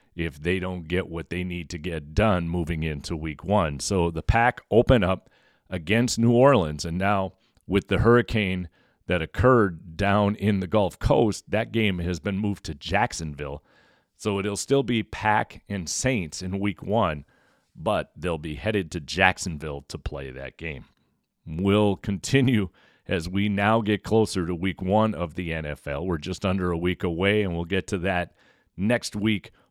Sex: male